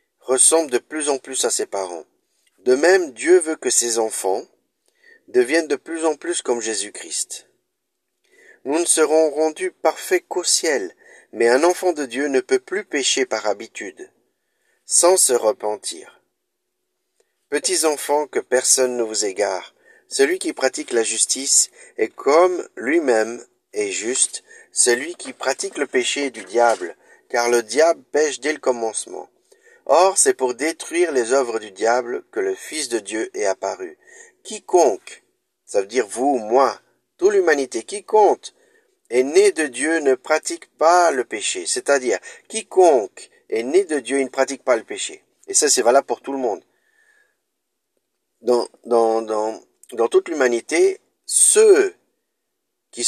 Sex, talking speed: male, 155 wpm